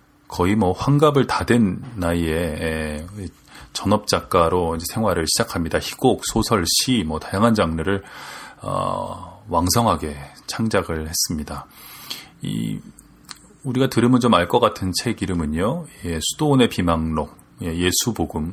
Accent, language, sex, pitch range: native, Korean, male, 85-115 Hz